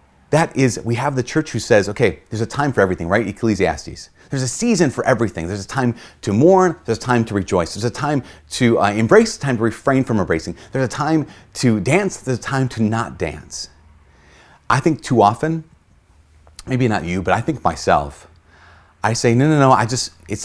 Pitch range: 85-120 Hz